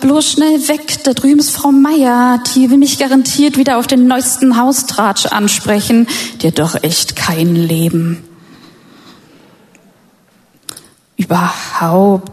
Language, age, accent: German, 20-39, German